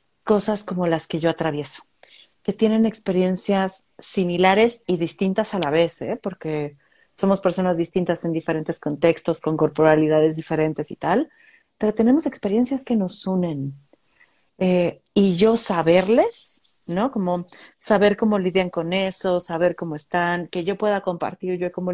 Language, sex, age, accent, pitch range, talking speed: Spanish, female, 40-59, Mexican, 175-220 Hz, 150 wpm